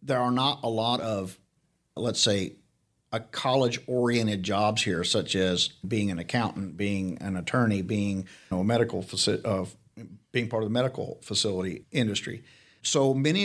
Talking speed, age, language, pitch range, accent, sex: 160 wpm, 50-69, English, 100-125 Hz, American, male